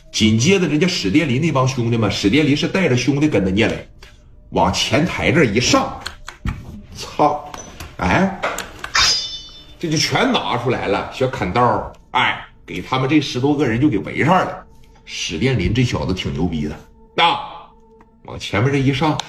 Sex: male